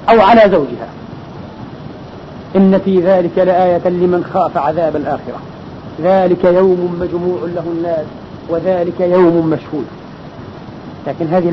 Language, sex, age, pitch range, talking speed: Arabic, male, 40-59, 210-280 Hz, 110 wpm